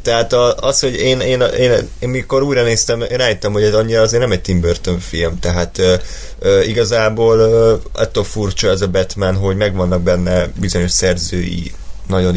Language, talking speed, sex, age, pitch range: Hungarian, 165 wpm, male, 20-39, 85-105 Hz